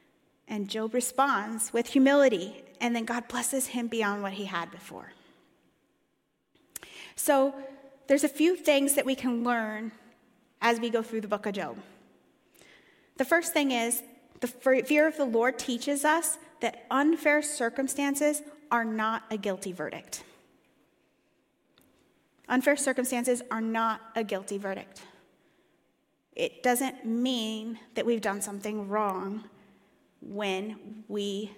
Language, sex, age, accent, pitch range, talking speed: English, female, 30-49, American, 215-275 Hz, 130 wpm